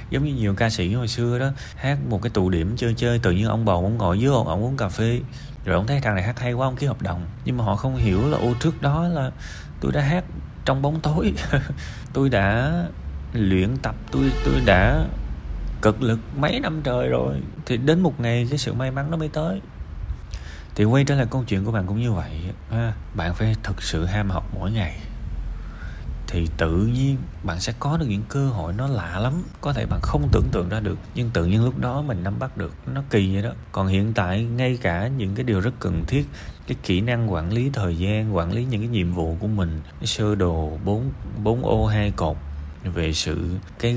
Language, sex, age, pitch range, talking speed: Vietnamese, male, 20-39, 90-125 Hz, 235 wpm